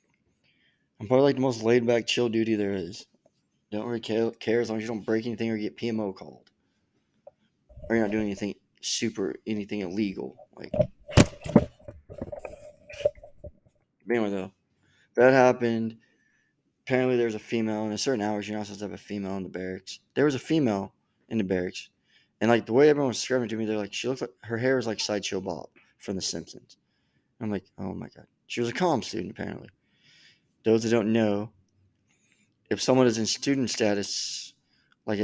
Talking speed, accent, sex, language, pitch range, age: 185 wpm, American, male, English, 100-115 Hz, 20-39